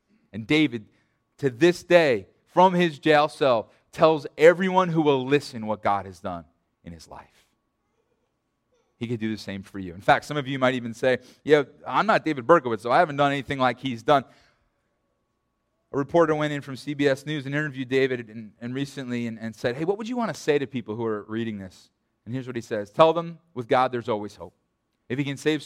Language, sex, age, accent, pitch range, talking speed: English, male, 30-49, American, 115-145 Hz, 220 wpm